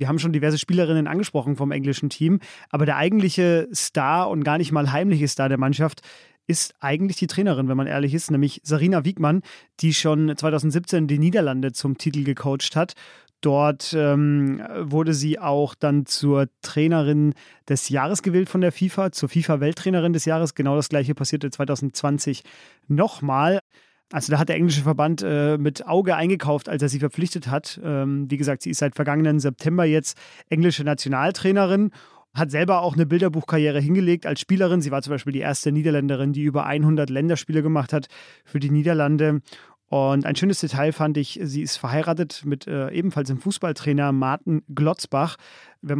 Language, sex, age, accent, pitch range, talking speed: German, male, 30-49, German, 145-170 Hz, 170 wpm